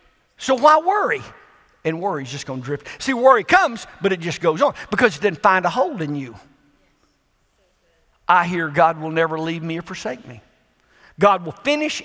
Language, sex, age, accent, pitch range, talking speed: English, male, 50-69, American, 180-270 Hz, 185 wpm